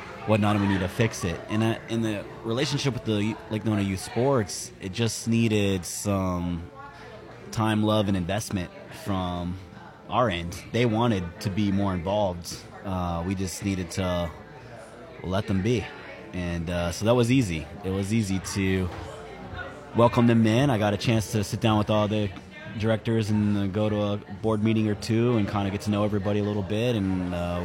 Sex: male